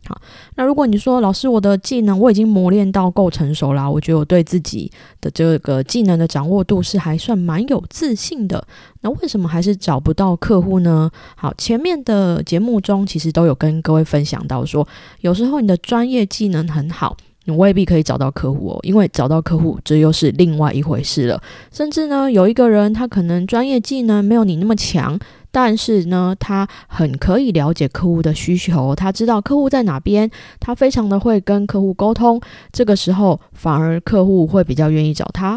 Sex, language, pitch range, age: female, Chinese, 160-215 Hz, 20-39